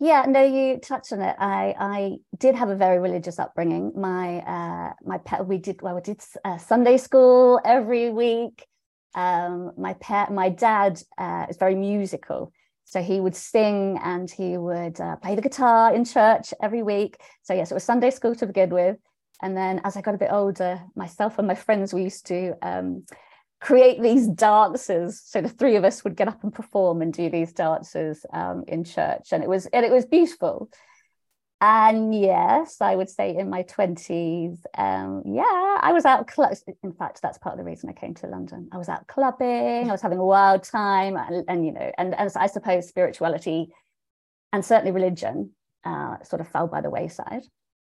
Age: 30-49